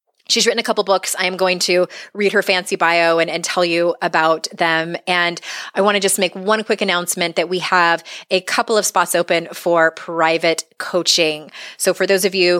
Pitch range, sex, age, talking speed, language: 170-205 Hz, female, 20-39, 210 wpm, English